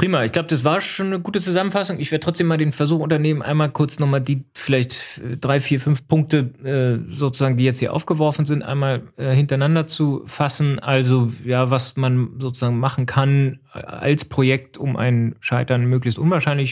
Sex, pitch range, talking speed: male, 115-140 Hz, 185 wpm